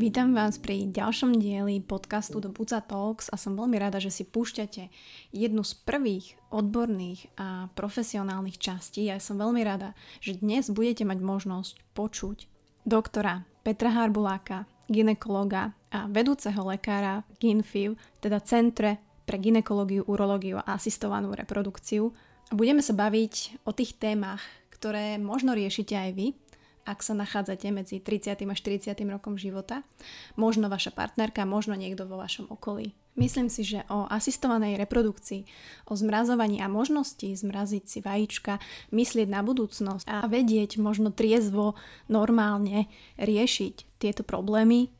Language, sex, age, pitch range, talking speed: Slovak, female, 20-39, 200-225 Hz, 135 wpm